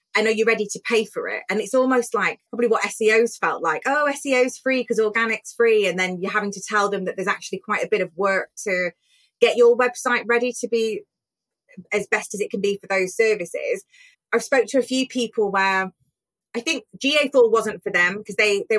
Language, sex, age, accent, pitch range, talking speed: English, female, 20-39, British, 200-250 Hz, 230 wpm